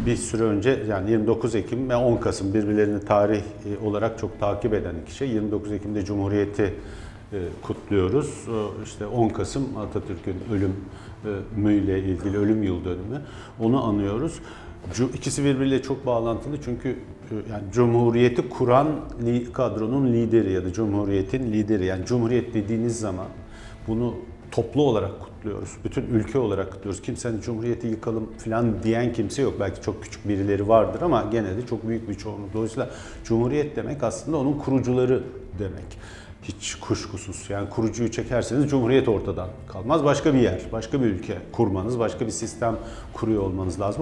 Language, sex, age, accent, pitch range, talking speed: Turkish, male, 50-69, native, 100-120 Hz, 140 wpm